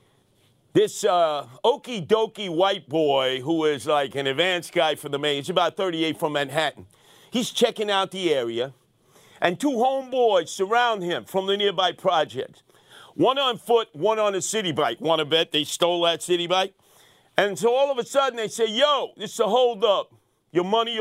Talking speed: 190 wpm